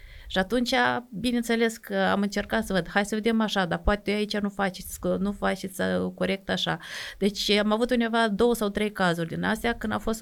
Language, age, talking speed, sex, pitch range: Romanian, 30-49, 205 wpm, female, 185-230 Hz